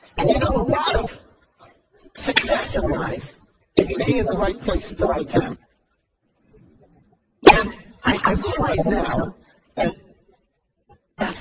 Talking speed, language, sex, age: 135 wpm, English, male, 50-69